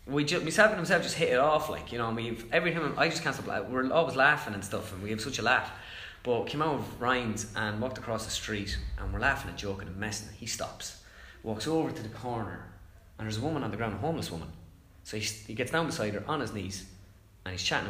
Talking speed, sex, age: 260 wpm, male, 20-39